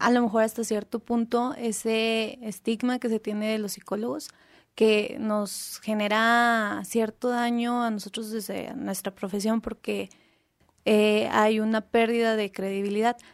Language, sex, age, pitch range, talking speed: Spanish, female, 20-39, 205-235 Hz, 140 wpm